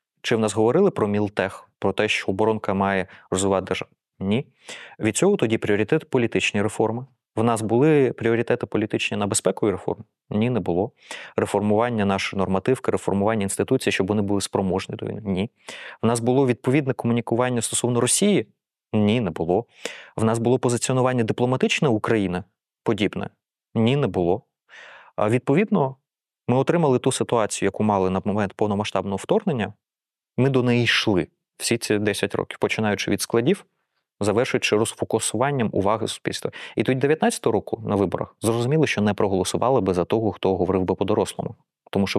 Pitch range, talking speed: 100-125 Hz, 155 wpm